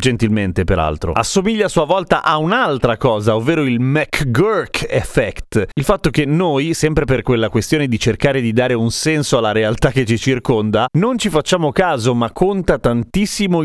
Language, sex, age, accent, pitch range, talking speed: Italian, male, 30-49, native, 115-160 Hz, 170 wpm